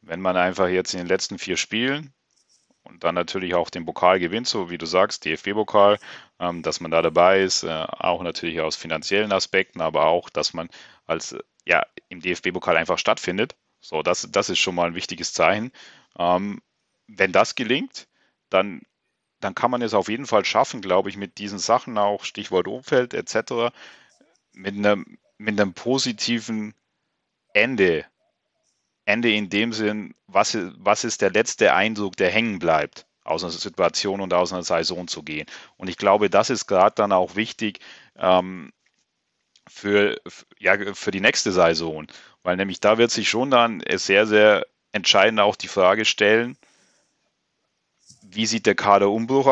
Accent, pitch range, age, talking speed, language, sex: German, 90-115 Hz, 40-59, 160 wpm, German, male